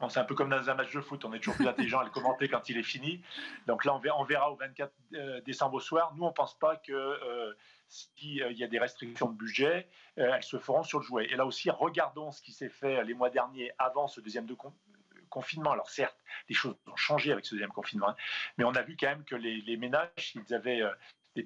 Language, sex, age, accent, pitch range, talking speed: French, male, 40-59, French, 120-145 Hz, 255 wpm